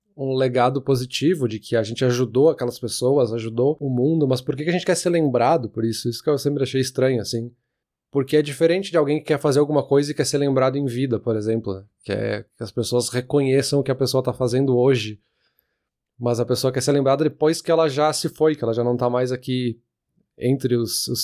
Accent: Brazilian